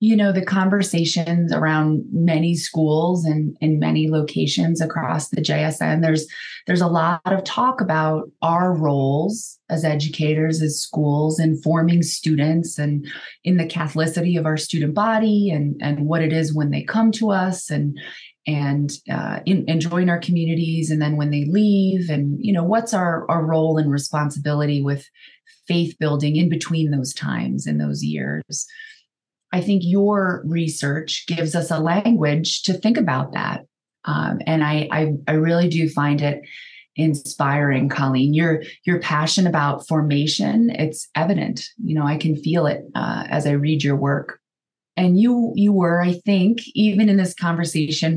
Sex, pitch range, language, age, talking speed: female, 150-175 Hz, English, 20-39, 165 wpm